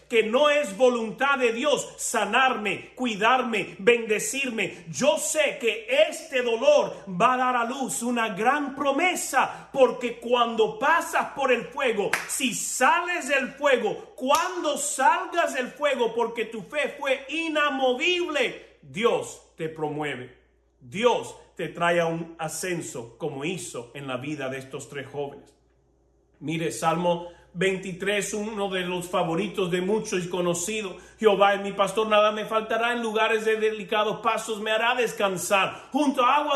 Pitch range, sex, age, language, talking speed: 190-265 Hz, male, 40-59, Spanish, 145 wpm